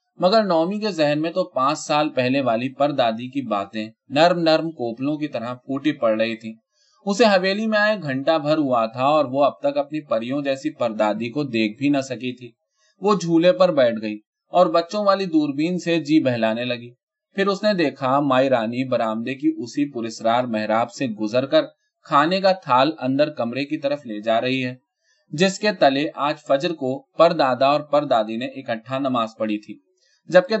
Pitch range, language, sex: 125-180 Hz, Urdu, male